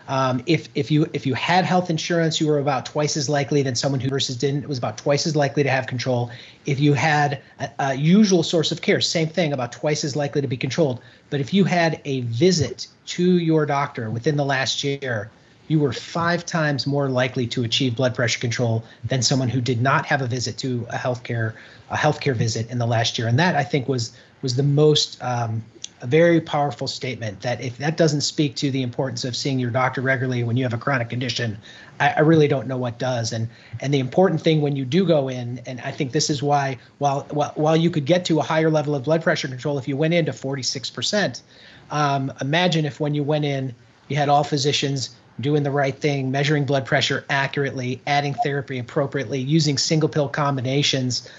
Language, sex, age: English, male, 30-49